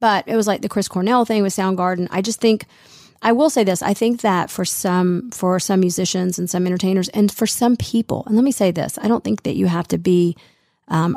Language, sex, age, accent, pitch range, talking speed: English, female, 30-49, American, 175-200 Hz, 245 wpm